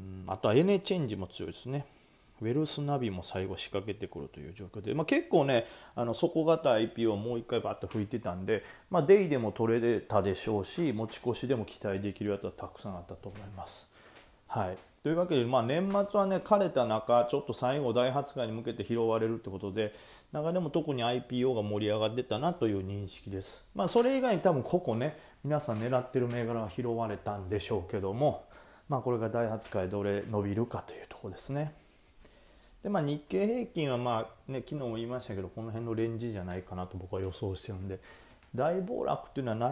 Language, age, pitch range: Japanese, 30-49, 100-140 Hz